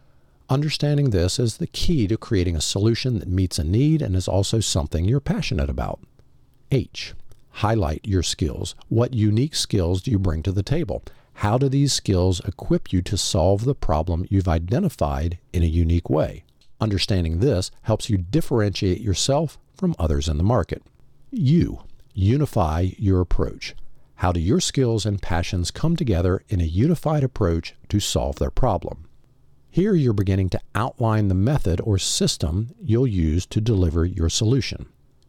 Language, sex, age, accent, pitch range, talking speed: English, male, 50-69, American, 90-125 Hz, 160 wpm